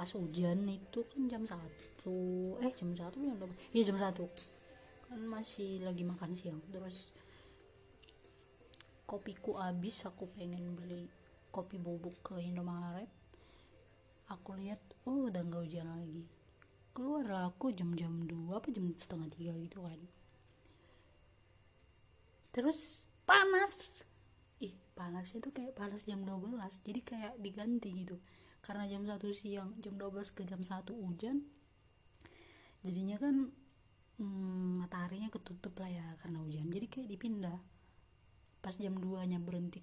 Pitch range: 170-205 Hz